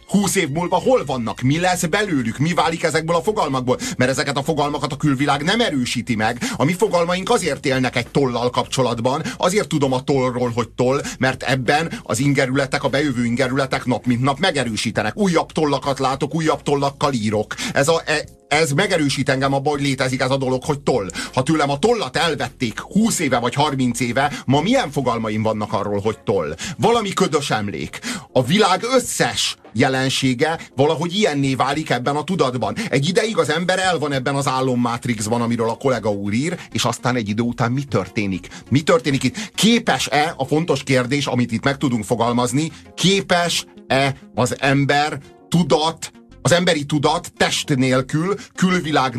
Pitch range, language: 125-160 Hz, Hungarian